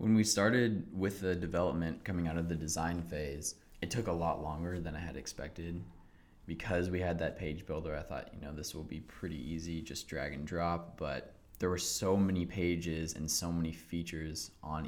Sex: male